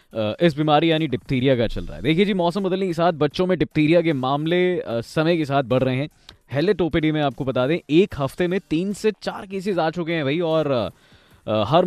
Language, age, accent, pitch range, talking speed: Hindi, 20-39, native, 125-170 Hz, 225 wpm